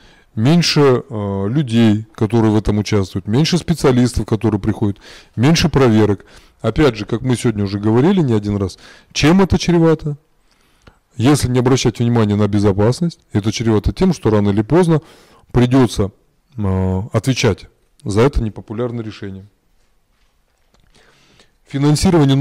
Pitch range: 105-140 Hz